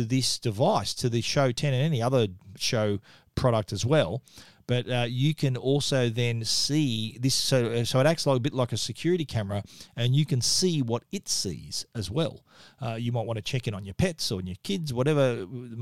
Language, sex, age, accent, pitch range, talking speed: English, male, 40-59, Australian, 120-150 Hz, 215 wpm